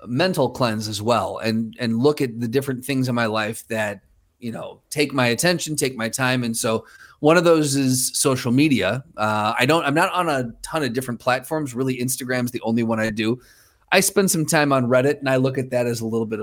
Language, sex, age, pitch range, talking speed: English, male, 30-49, 110-140 Hz, 235 wpm